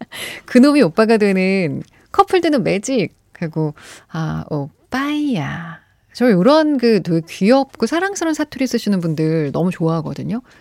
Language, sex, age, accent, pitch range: Korean, female, 30-49, native, 165-265 Hz